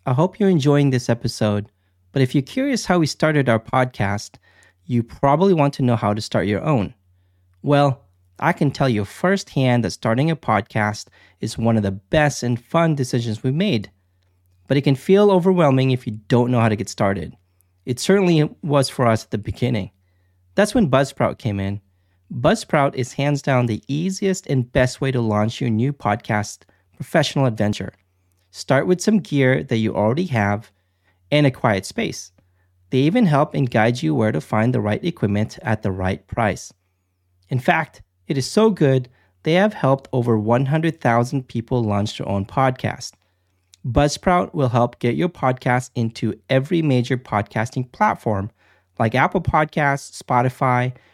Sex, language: male, English